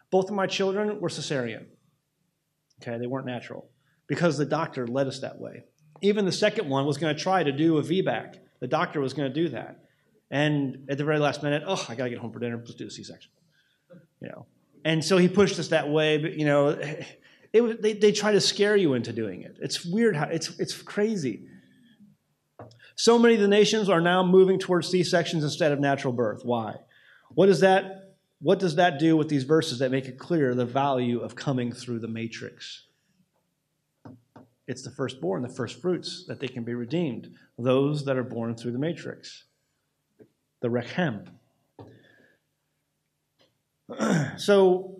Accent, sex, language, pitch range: American, male, English, 125-175 Hz